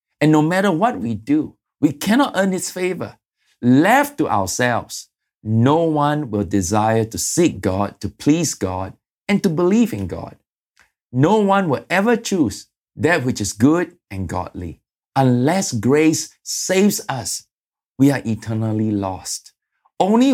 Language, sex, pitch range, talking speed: English, male, 105-170 Hz, 145 wpm